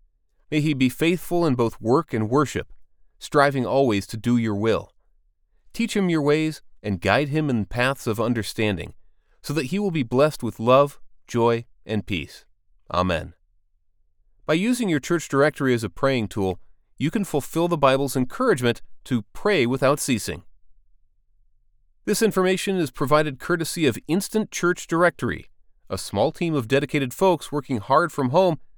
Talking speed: 160 wpm